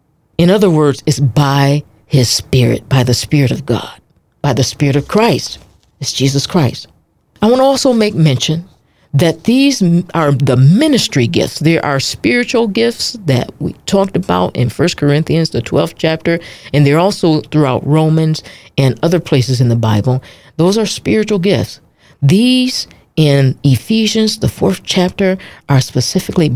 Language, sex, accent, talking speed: English, female, American, 160 wpm